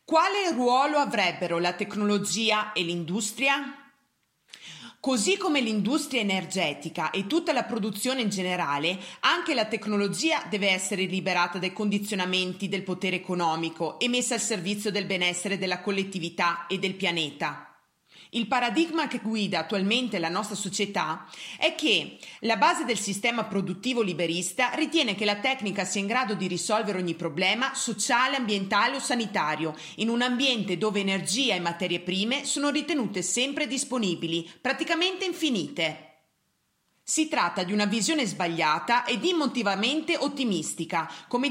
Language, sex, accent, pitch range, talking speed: Italian, female, native, 185-260 Hz, 135 wpm